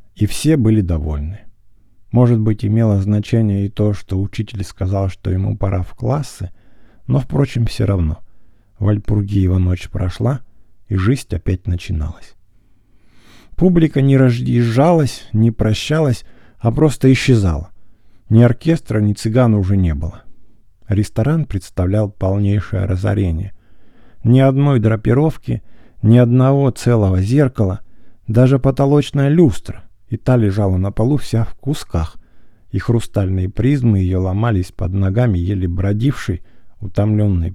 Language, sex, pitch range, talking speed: English, male, 95-125 Hz, 120 wpm